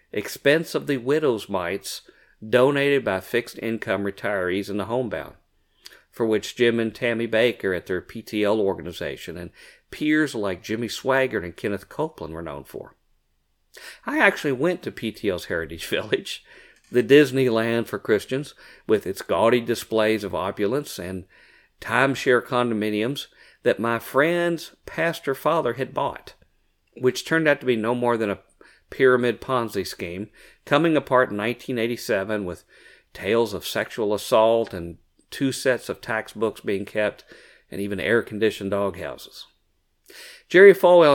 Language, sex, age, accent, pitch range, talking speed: English, male, 50-69, American, 105-135 Hz, 140 wpm